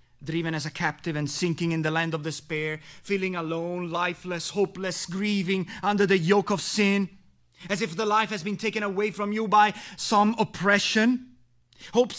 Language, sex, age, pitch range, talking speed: English, male, 30-49, 160-235 Hz, 170 wpm